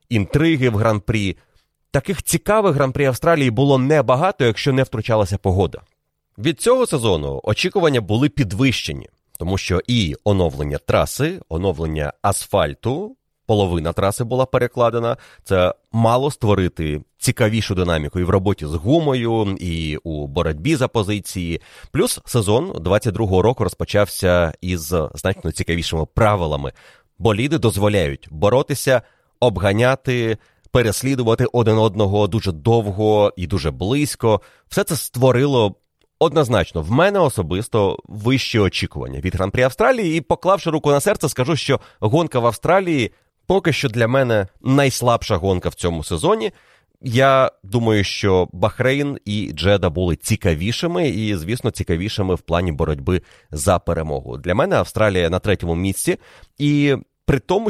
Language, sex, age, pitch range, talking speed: Ukrainian, male, 30-49, 90-130 Hz, 130 wpm